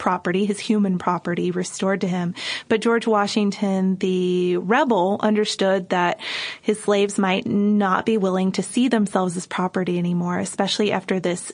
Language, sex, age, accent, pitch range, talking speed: English, female, 20-39, American, 190-215 Hz, 150 wpm